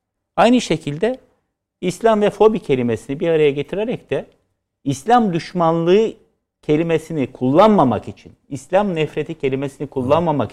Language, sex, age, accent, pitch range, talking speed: Turkish, male, 60-79, native, 140-220 Hz, 110 wpm